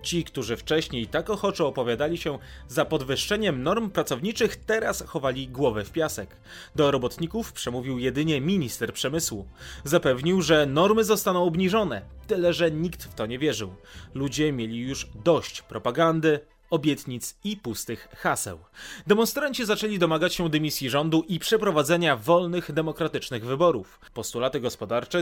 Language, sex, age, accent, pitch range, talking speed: Polish, male, 30-49, native, 125-185 Hz, 135 wpm